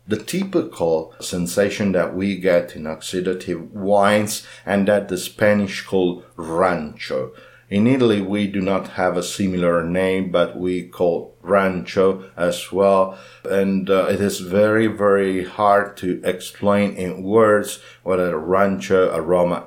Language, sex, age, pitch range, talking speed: English, male, 50-69, 90-110 Hz, 135 wpm